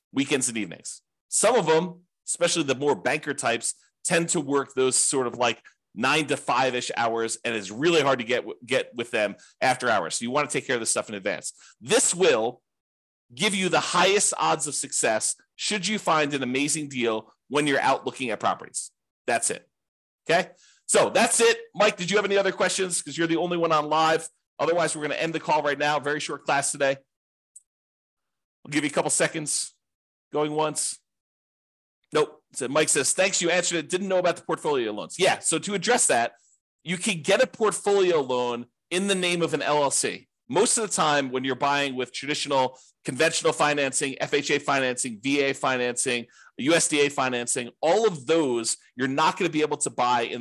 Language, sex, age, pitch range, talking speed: English, male, 40-59, 130-170 Hz, 200 wpm